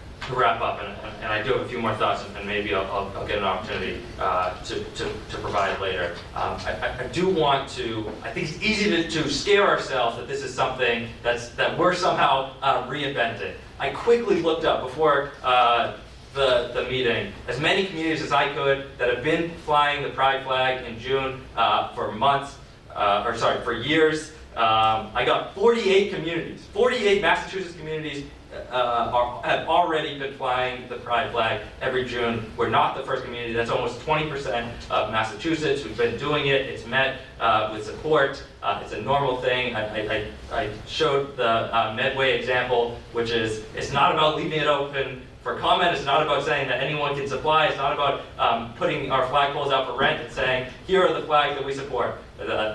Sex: male